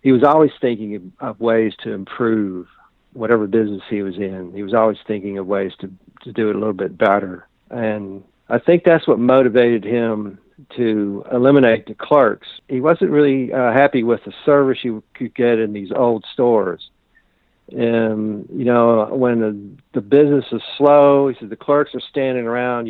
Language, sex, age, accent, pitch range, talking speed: English, male, 60-79, American, 110-125 Hz, 180 wpm